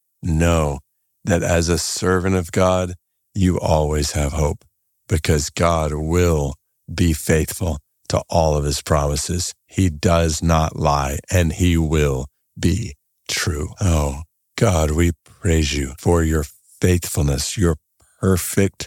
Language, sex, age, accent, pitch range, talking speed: English, male, 50-69, American, 85-120 Hz, 125 wpm